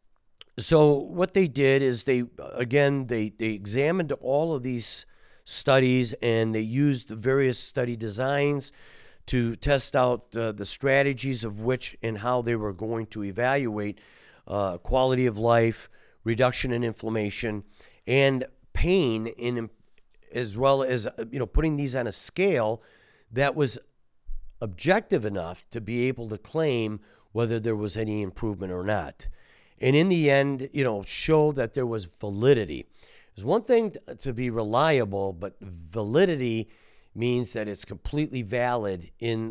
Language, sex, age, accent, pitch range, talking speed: English, male, 50-69, American, 105-135 Hz, 145 wpm